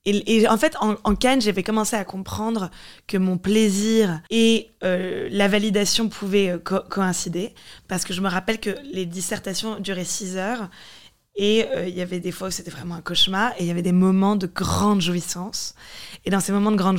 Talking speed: 210 wpm